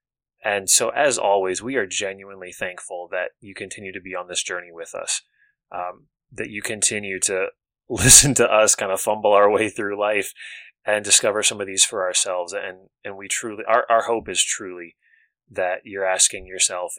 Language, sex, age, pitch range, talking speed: English, male, 20-39, 90-130 Hz, 185 wpm